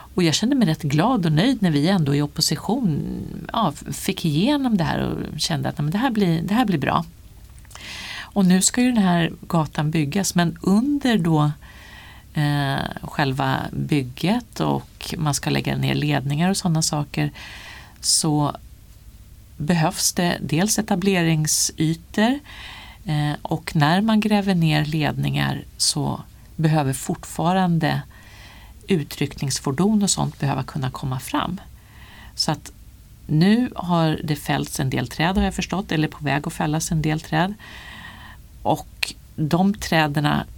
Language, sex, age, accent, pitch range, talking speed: Swedish, female, 40-59, native, 140-180 Hz, 135 wpm